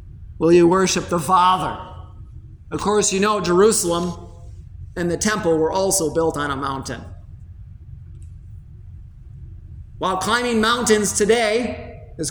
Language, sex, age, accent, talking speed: English, male, 40-59, American, 115 wpm